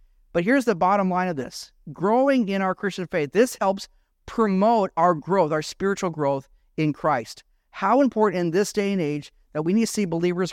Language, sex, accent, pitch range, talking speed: English, male, American, 135-200 Hz, 200 wpm